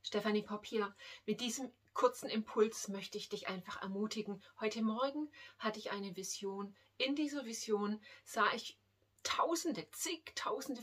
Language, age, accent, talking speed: German, 30-49, German, 135 wpm